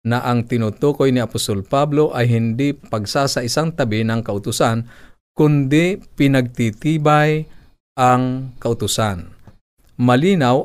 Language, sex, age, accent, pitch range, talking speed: Filipino, male, 50-69, native, 110-130 Hz, 100 wpm